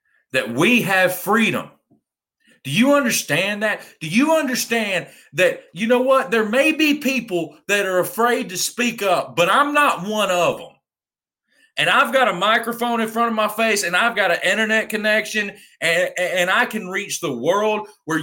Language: English